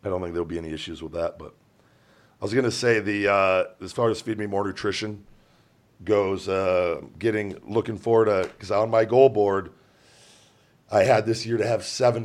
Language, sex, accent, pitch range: English, male, American, 90-110 Hz